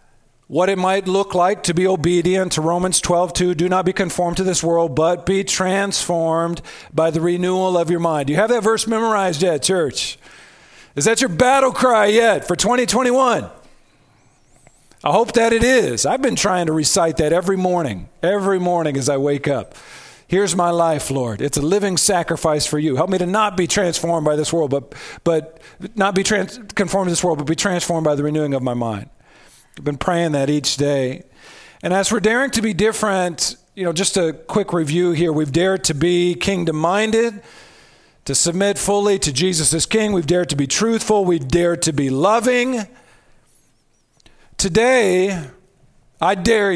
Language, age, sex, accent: English, 40-59, male, American